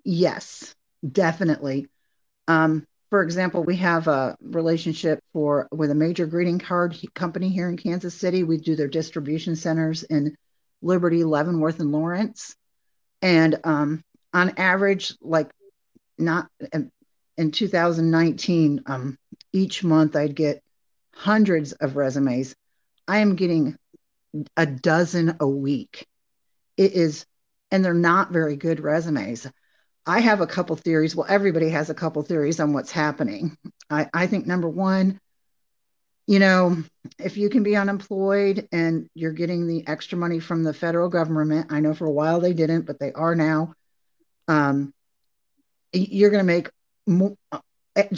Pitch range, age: 150-180 Hz, 40-59